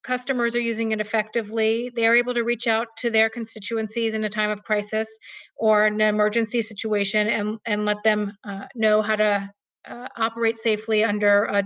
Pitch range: 215-235 Hz